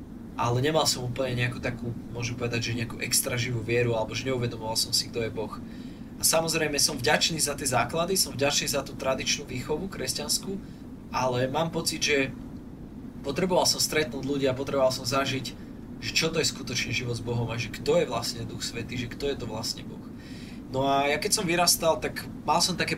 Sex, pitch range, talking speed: male, 130-145 Hz, 190 wpm